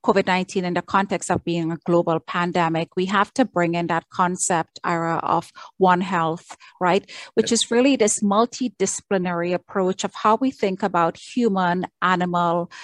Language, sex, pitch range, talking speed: English, female, 180-215 Hz, 160 wpm